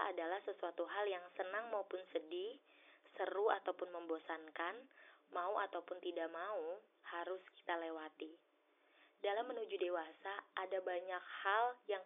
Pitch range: 175-225 Hz